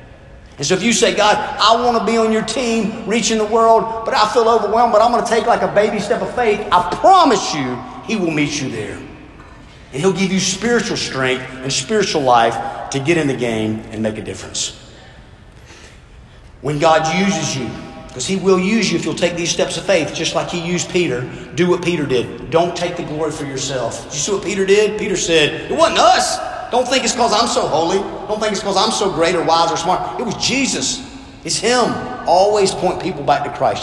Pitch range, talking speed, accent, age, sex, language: 130-200 Hz, 225 wpm, American, 40-59, male, English